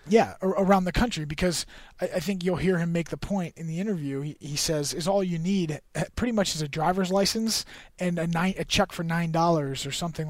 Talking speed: 240 wpm